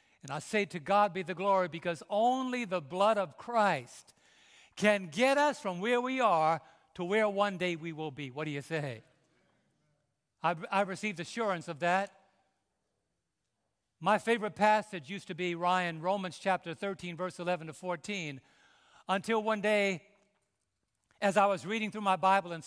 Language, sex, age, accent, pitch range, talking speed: English, male, 60-79, American, 165-210 Hz, 165 wpm